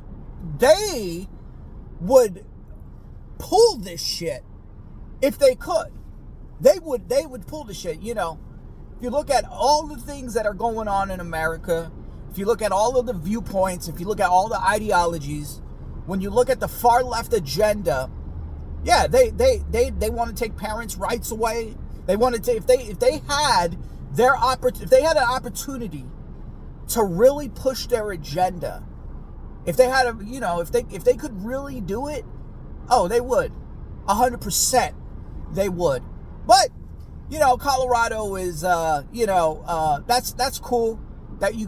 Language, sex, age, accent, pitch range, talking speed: English, male, 40-59, American, 170-250 Hz, 175 wpm